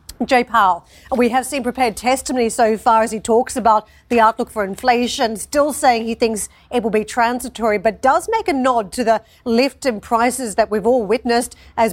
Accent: Australian